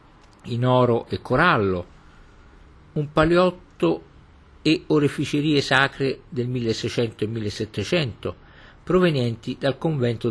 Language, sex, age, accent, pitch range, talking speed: Italian, male, 50-69, native, 95-130 Hz, 95 wpm